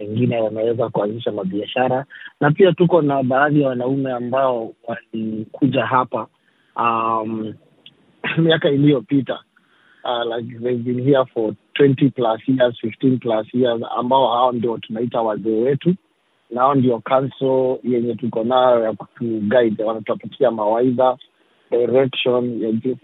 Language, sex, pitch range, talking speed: Swahili, male, 115-135 Hz, 90 wpm